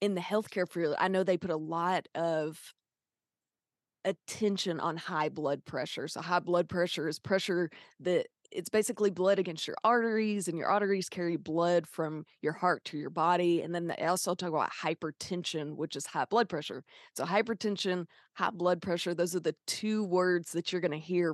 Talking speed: 190 wpm